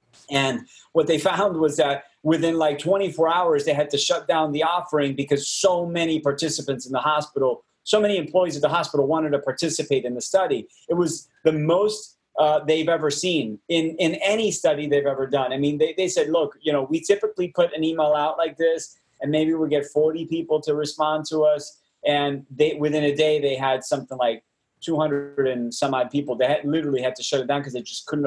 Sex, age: male, 30-49